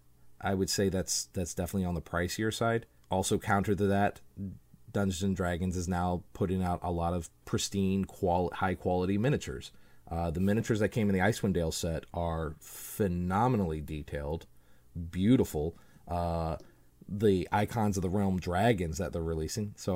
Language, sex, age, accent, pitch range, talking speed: English, male, 30-49, American, 85-105 Hz, 165 wpm